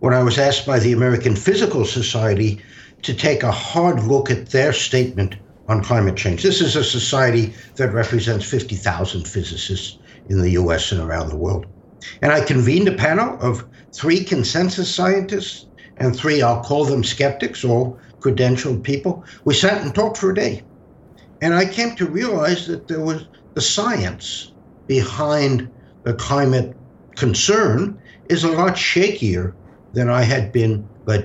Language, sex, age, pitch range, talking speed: English, male, 60-79, 110-170 Hz, 160 wpm